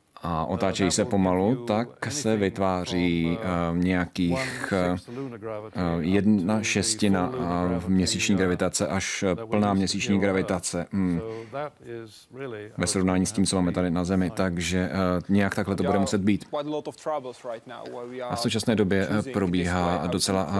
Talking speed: 115 wpm